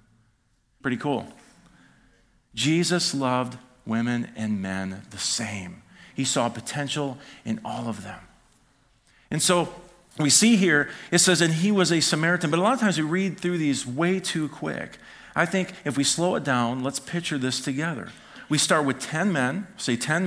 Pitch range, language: 125-165 Hz, English